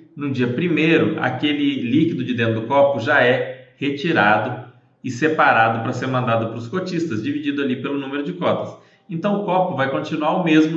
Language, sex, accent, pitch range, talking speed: Portuguese, male, Brazilian, 115-155 Hz, 185 wpm